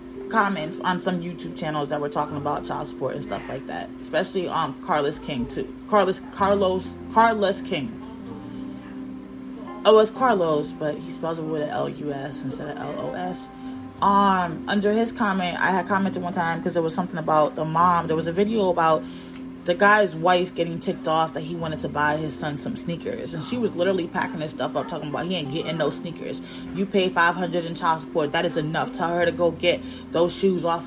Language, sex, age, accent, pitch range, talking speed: English, female, 30-49, American, 150-200 Hz, 205 wpm